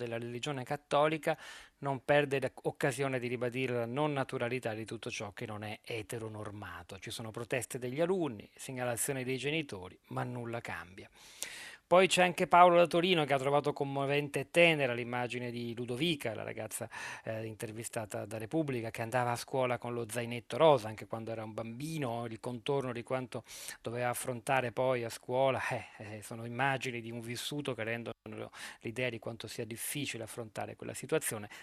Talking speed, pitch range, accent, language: 170 wpm, 115-145 Hz, native, Italian